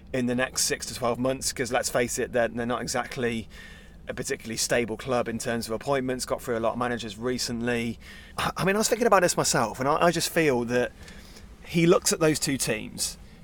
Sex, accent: male, British